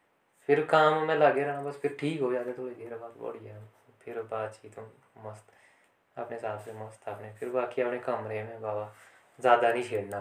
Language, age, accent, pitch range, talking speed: Hindi, 20-39, native, 105-135 Hz, 175 wpm